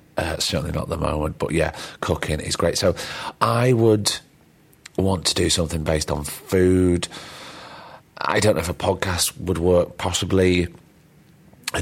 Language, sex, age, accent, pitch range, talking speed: English, male, 30-49, British, 80-105 Hz, 160 wpm